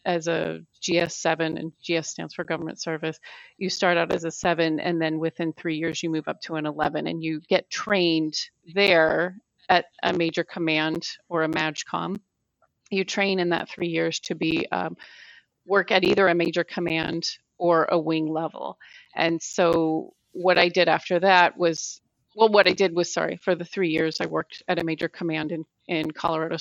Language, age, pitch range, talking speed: English, 30-49, 160-180 Hz, 190 wpm